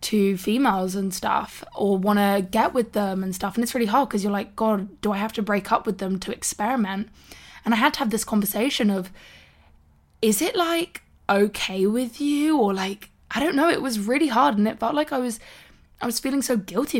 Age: 20-39